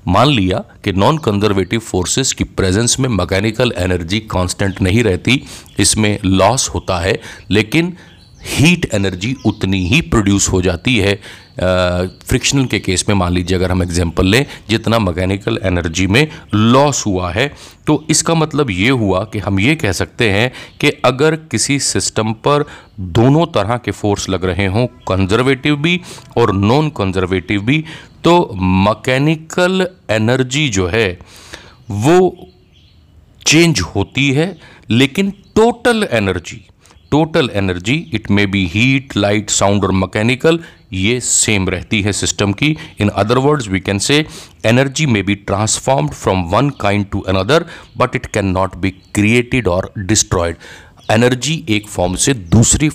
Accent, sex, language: native, male, Hindi